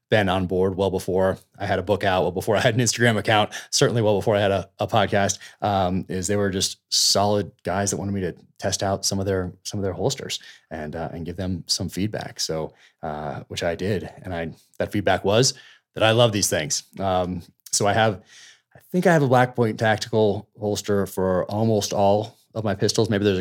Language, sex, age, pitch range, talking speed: English, male, 30-49, 90-115 Hz, 225 wpm